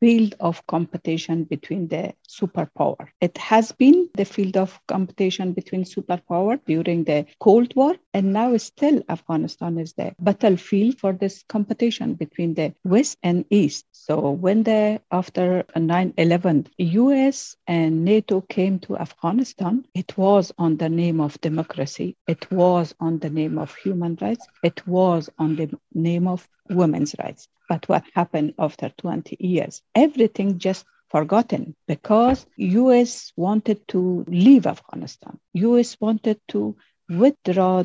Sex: female